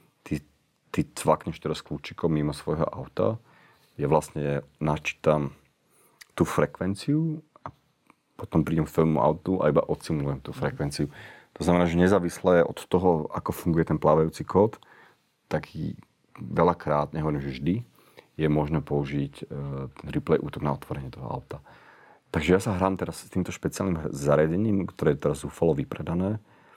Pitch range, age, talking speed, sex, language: 70-80 Hz, 40-59, 140 wpm, male, Slovak